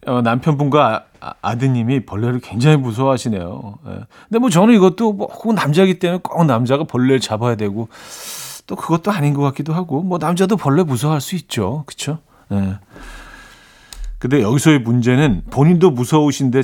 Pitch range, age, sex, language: 115-160 Hz, 40-59, male, Korean